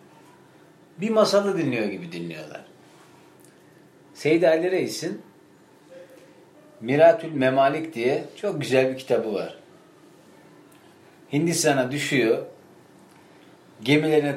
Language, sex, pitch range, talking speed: Turkish, male, 125-170 Hz, 80 wpm